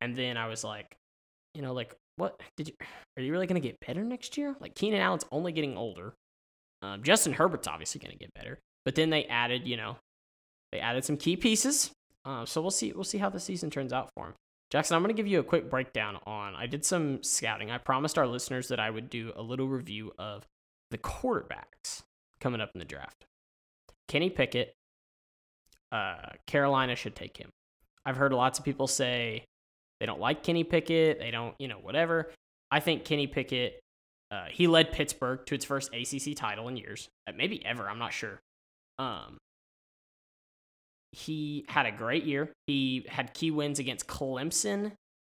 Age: 10-29